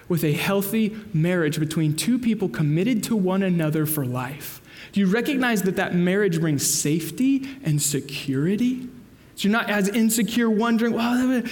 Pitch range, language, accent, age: 155-225 Hz, English, American, 20-39